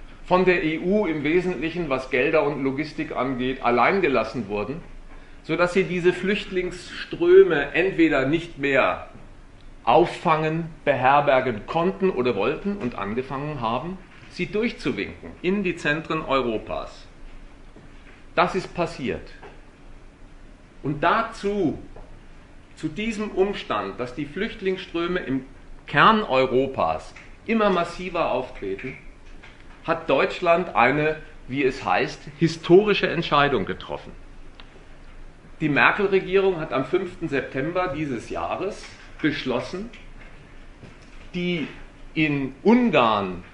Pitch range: 140-185 Hz